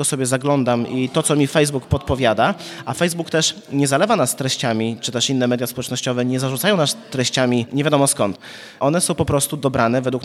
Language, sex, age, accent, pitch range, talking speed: Polish, male, 30-49, native, 125-155 Hz, 200 wpm